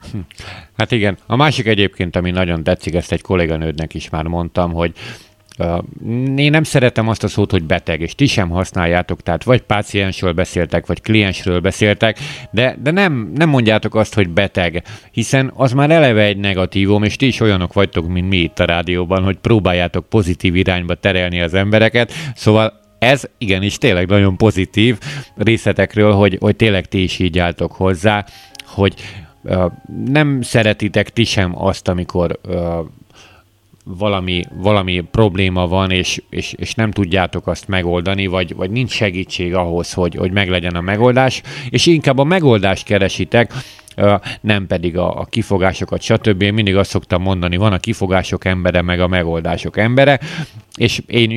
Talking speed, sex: 160 wpm, male